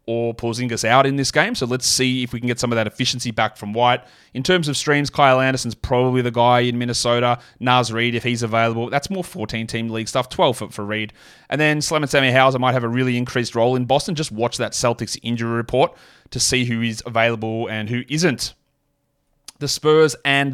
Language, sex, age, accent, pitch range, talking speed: English, male, 30-49, Australian, 115-135 Hz, 230 wpm